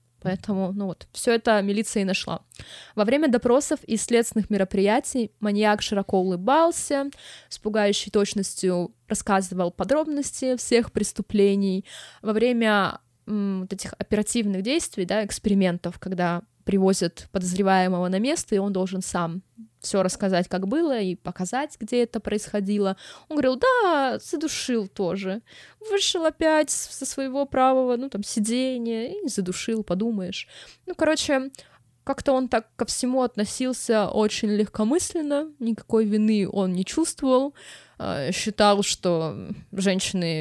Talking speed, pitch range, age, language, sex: 125 wpm, 185-245 Hz, 20-39, Russian, female